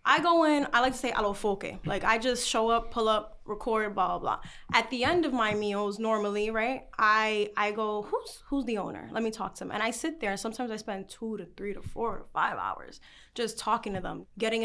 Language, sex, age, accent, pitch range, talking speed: English, female, 10-29, American, 195-235 Hz, 240 wpm